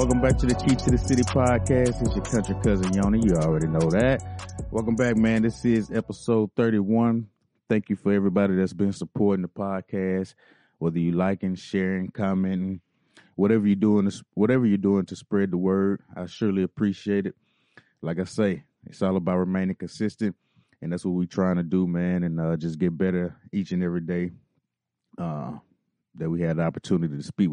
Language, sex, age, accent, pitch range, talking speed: English, male, 30-49, American, 90-110 Hz, 190 wpm